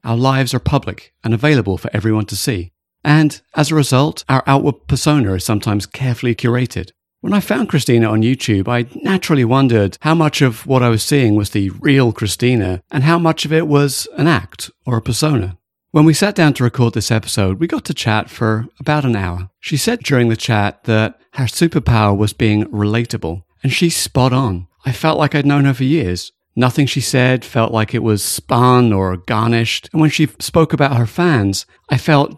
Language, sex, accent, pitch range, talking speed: English, male, British, 105-140 Hz, 205 wpm